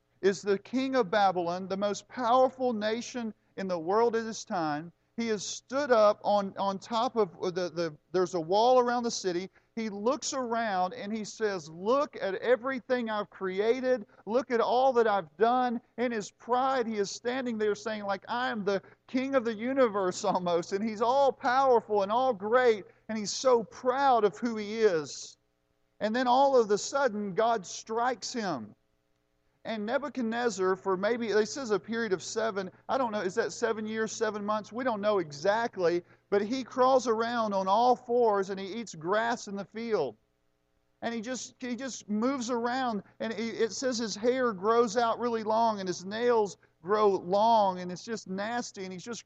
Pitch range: 195-240 Hz